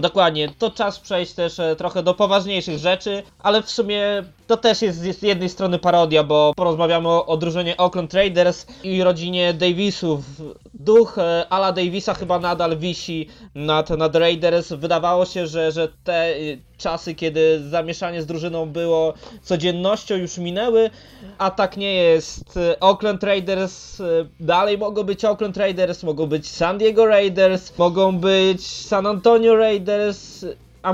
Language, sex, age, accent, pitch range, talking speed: Polish, male, 20-39, native, 170-195 Hz, 145 wpm